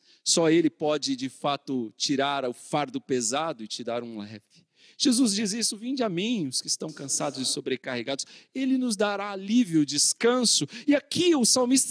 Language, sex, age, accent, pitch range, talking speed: Portuguese, male, 40-59, Brazilian, 155-250 Hz, 175 wpm